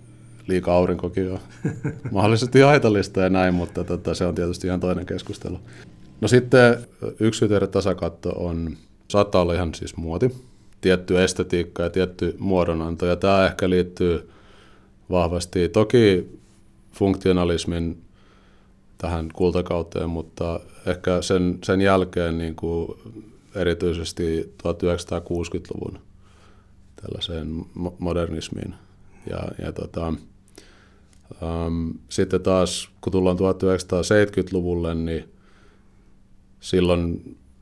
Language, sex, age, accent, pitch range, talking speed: Finnish, male, 30-49, native, 85-95 Hz, 90 wpm